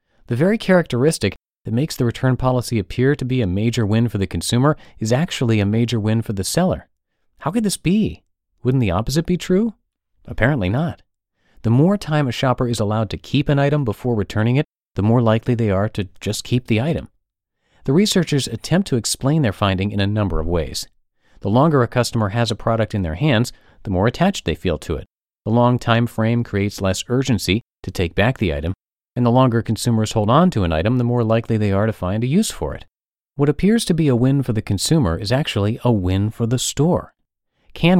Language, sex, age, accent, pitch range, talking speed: English, male, 40-59, American, 100-135 Hz, 220 wpm